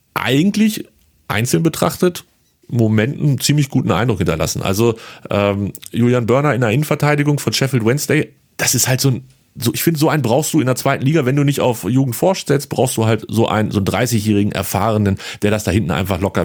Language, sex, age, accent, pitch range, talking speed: German, male, 40-59, German, 110-145 Hz, 200 wpm